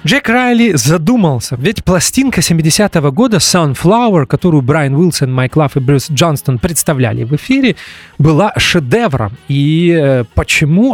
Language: English